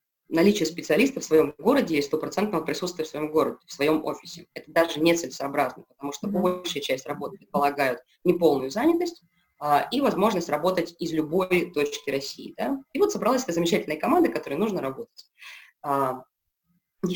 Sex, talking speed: female, 155 wpm